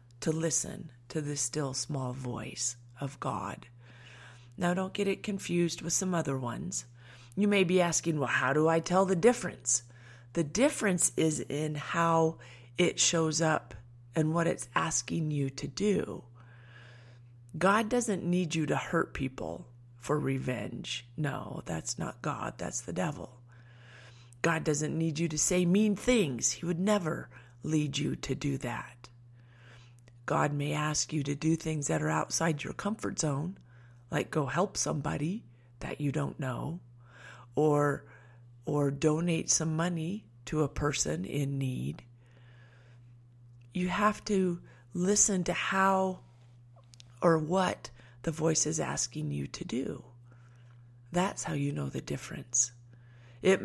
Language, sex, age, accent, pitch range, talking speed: English, female, 30-49, American, 120-170 Hz, 145 wpm